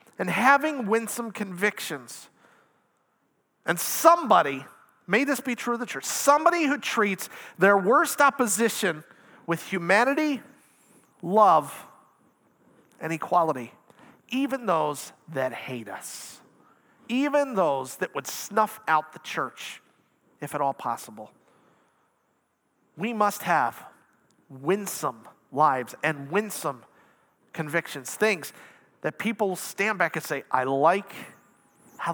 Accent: American